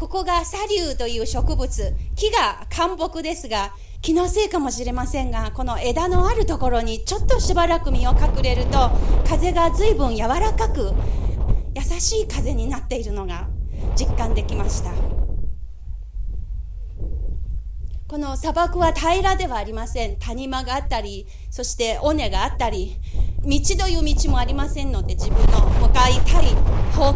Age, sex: 30-49, female